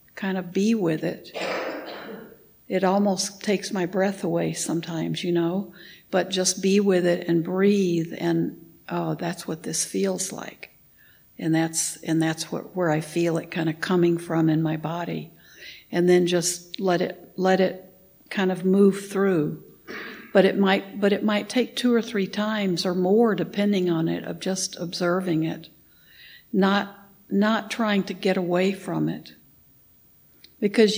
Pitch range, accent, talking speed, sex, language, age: 170-195 Hz, American, 165 wpm, female, English, 60-79